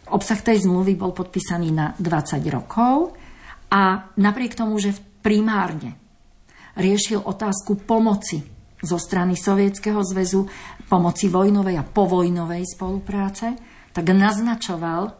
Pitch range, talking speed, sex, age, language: 175-205 Hz, 105 wpm, female, 50-69, Slovak